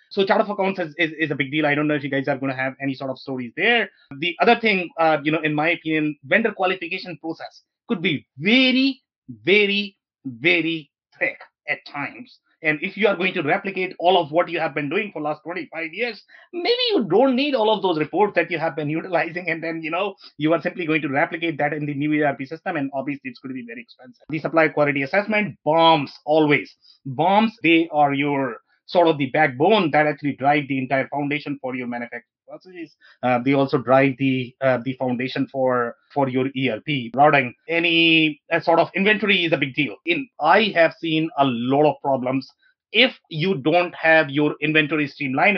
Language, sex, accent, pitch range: English, male, Indian, 140-185 Hz